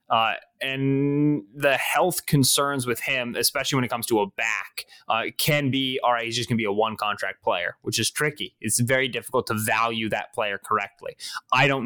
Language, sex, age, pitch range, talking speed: English, male, 20-39, 115-135 Hz, 200 wpm